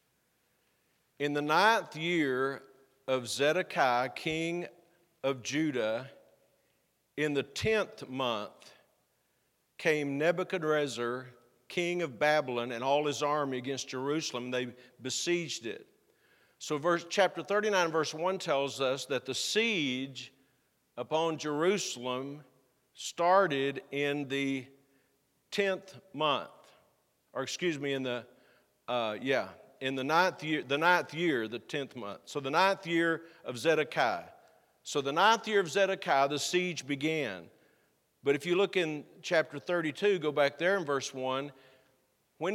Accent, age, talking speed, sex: American, 50-69, 130 wpm, male